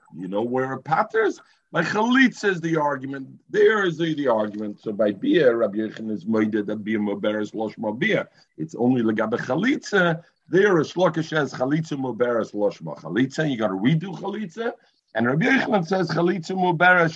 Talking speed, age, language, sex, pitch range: 185 wpm, 50-69, English, male, 120-175 Hz